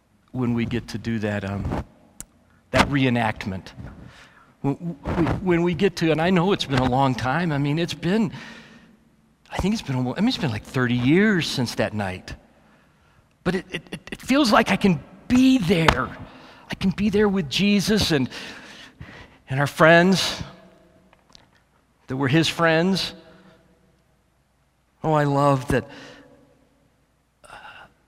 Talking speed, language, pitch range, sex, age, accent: 150 wpm, English, 115-175 Hz, male, 40-59, American